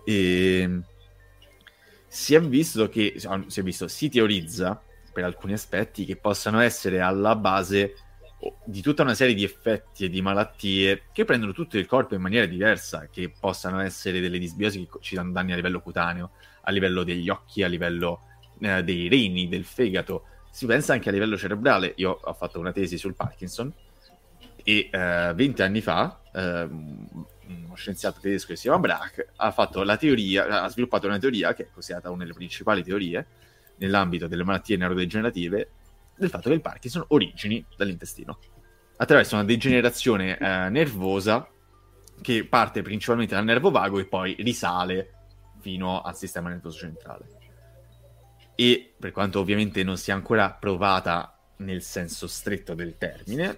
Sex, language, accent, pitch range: male, Italian, native, 90-105 Hz